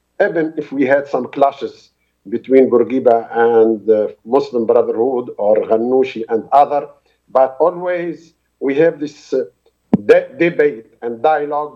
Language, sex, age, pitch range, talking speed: Arabic, male, 50-69, 140-175 Hz, 130 wpm